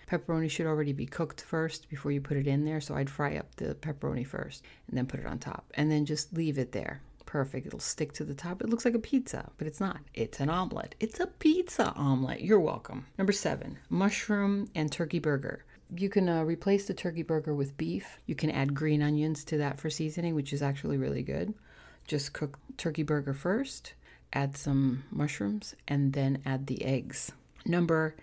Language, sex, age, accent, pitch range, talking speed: English, female, 40-59, American, 140-165 Hz, 205 wpm